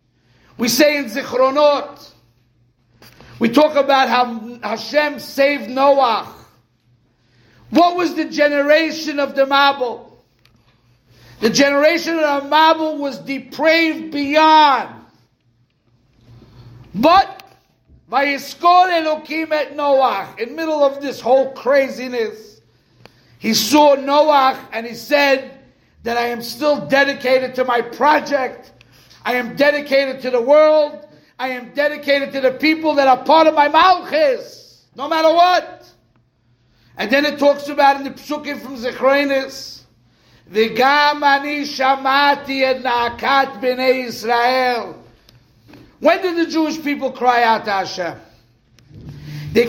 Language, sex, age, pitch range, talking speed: English, male, 60-79, 220-295 Hz, 110 wpm